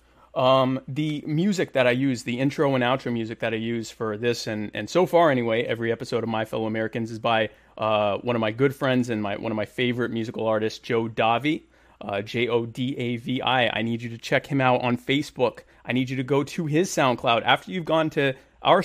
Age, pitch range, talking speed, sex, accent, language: 30-49, 115-155 Hz, 220 wpm, male, American, English